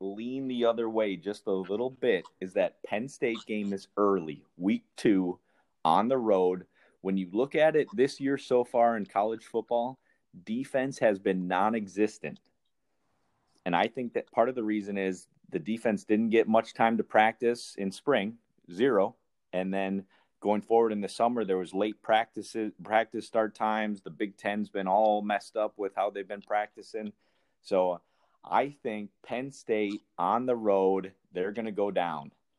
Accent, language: American, English